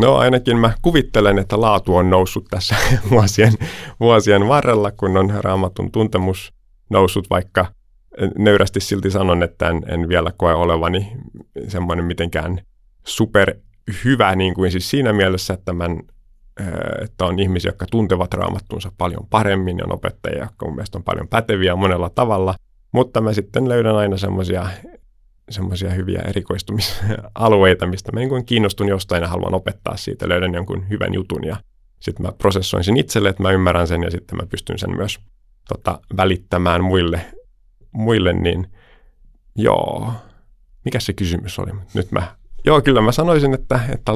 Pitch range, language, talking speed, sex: 90-110 Hz, Finnish, 155 wpm, male